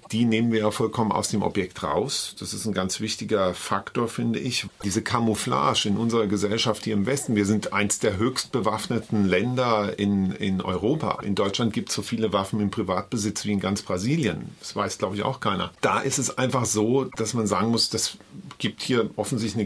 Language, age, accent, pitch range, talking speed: German, 50-69, German, 105-125 Hz, 210 wpm